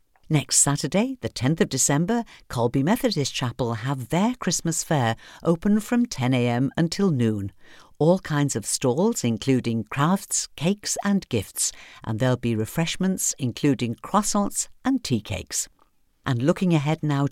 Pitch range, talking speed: 120-180 Hz, 140 wpm